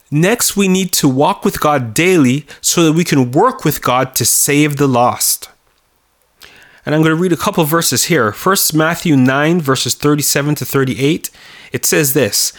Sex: male